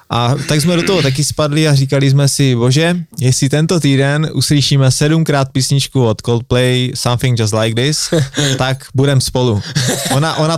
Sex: male